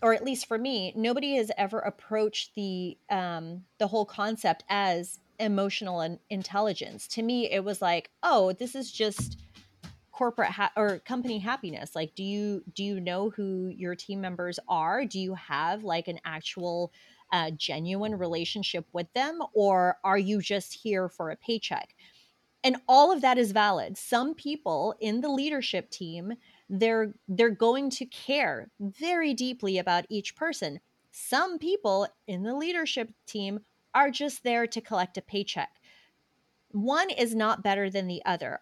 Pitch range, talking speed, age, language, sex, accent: 190-235 Hz, 160 wpm, 30-49, English, female, American